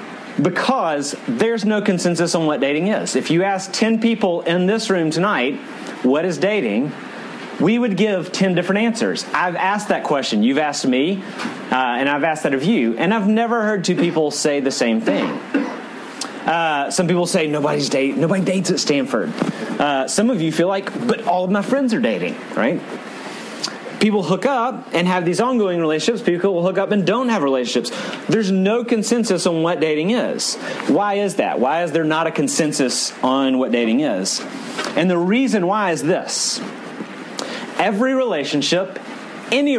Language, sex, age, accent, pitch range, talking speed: English, male, 30-49, American, 170-235 Hz, 180 wpm